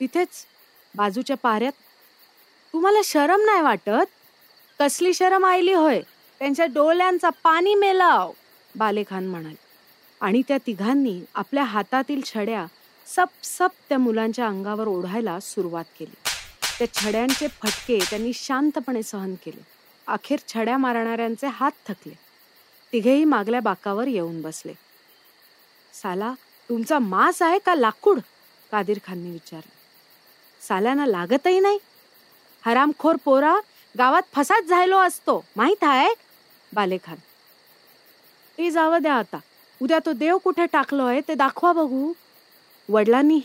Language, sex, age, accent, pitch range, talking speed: Marathi, female, 30-49, native, 210-315 Hz, 90 wpm